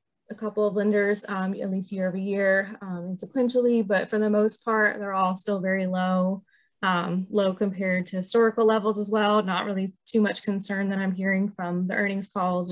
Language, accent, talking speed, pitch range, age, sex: English, American, 200 wpm, 180-210 Hz, 20-39, female